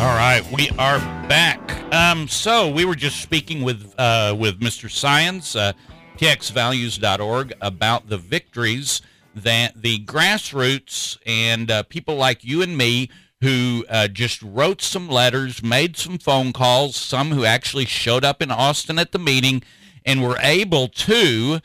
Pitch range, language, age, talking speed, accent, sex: 120-150 Hz, English, 50-69, 150 wpm, American, male